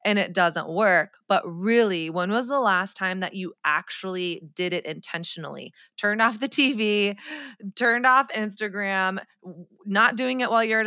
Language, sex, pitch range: English, female, 180-230 Hz